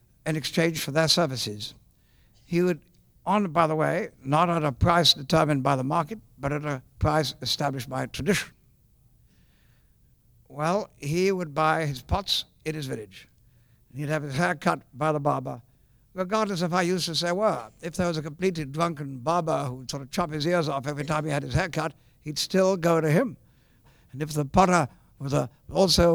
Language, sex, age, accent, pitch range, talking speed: English, male, 60-79, American, 140-175 Hz, 190 wpm